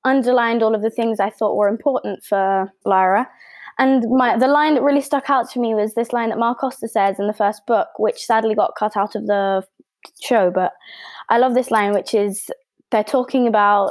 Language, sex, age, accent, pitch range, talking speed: English, female, 20-39, British, 210-245 Hz, 210 wpm